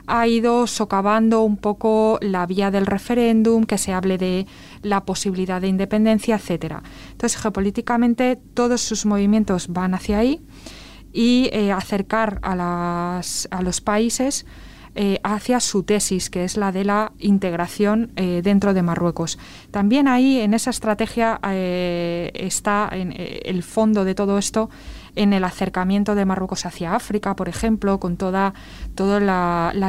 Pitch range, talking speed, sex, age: 185-225 Hz, 155 wpm, female, 20-39